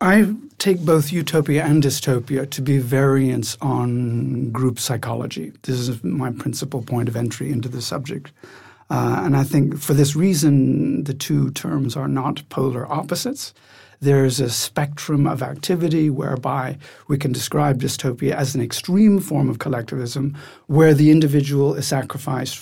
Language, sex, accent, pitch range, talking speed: English, male, American, 130-155 Hz, 155 wpm